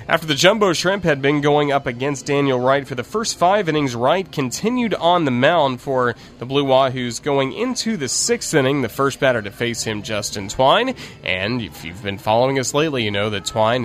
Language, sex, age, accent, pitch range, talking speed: English, male, 30-49, American, 115-155 Hz, 210 wpm